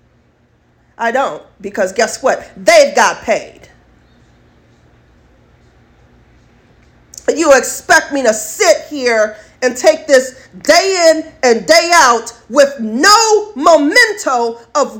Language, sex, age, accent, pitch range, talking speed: English, female, 40-59, American, 225-315 Hz, 105 wpm